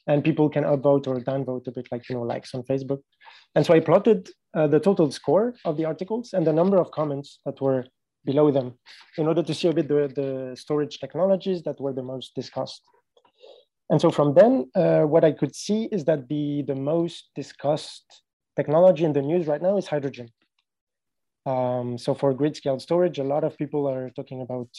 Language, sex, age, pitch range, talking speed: English, male, 20-39, 135-165 Hz, 205 wpm